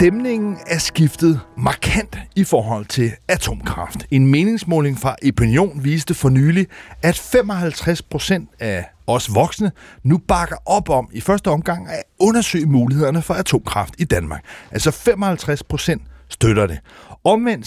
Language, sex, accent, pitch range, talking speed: Danish, male, native, 125-185 Hz, 140 wpm